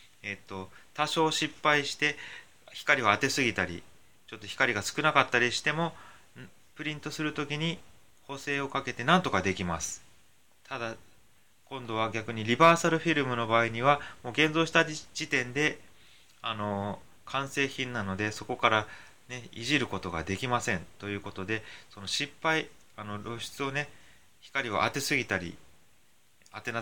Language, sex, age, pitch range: Japanese, male, 20-39, 95-130 Hz